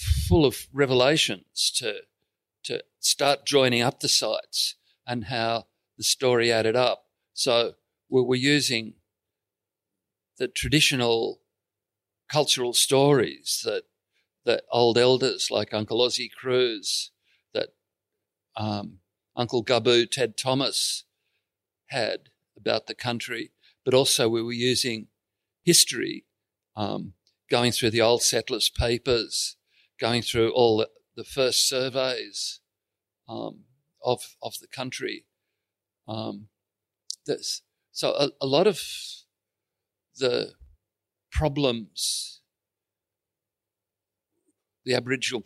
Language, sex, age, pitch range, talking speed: English, male, 50-69, 110-135 Hz, 100 wpm